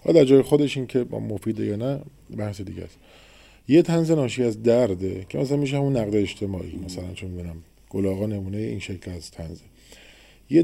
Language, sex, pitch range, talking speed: Persian, male, 100-140 Hz, 180 wpm